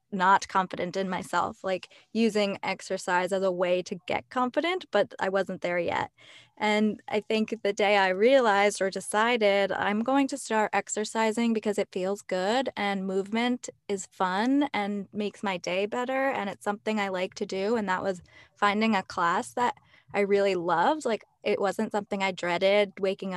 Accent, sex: American, female